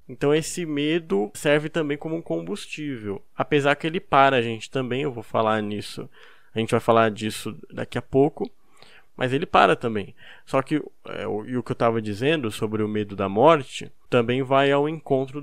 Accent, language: Brazilian, Portuguese